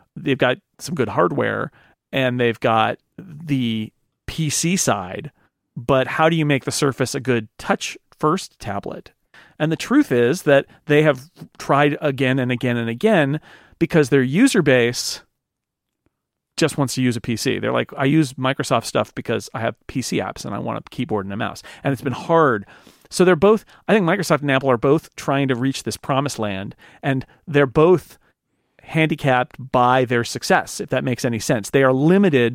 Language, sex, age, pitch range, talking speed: English, male, 40-59, 125-155 Hz, 185 wpm